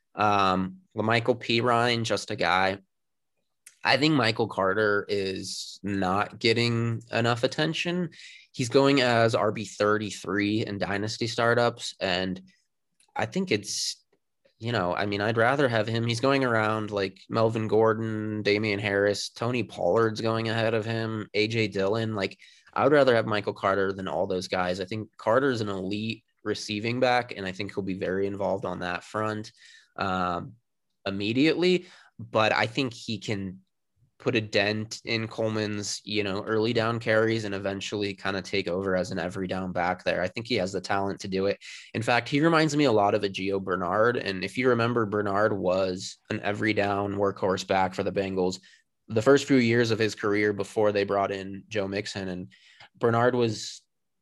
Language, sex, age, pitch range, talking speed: English, male, 20-39, 95-115 Hz, 175 wpm